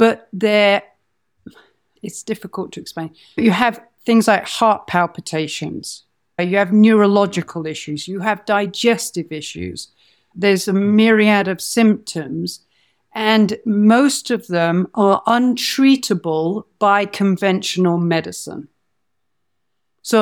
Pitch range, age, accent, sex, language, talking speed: 170-220 Hz, 50-69, British, female, English, 105 wpm